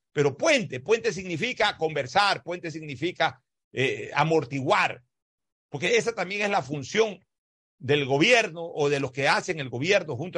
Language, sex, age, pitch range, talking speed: Spanish, male, 60-79, 180-250 Hz, 145 wpm